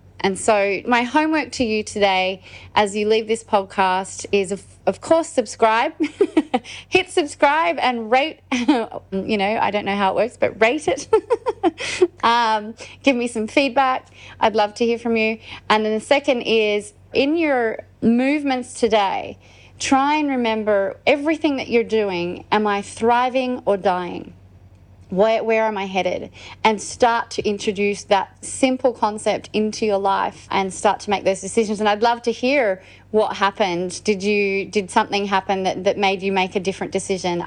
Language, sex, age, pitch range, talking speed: English, female, 30-49, 195-260 Hz, 170 wpm